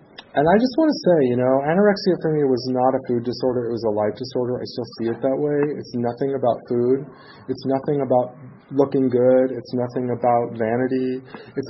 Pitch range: 115-135 Hz